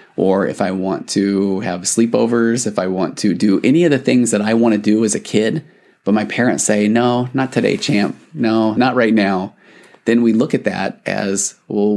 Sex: male